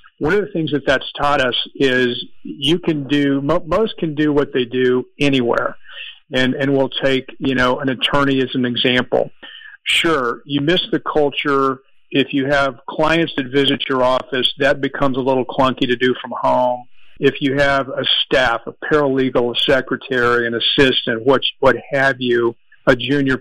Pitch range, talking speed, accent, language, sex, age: 130-145 Hz, 175 wpm, American, English, male, 50-69